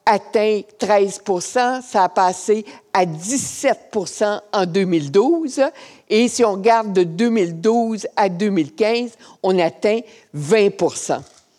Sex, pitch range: female, 185-235 Hz